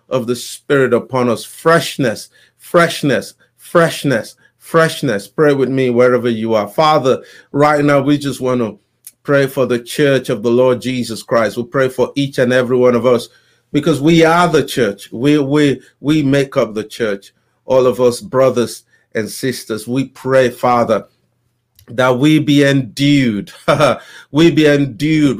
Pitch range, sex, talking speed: 125-150 Hz, male, 160 wpm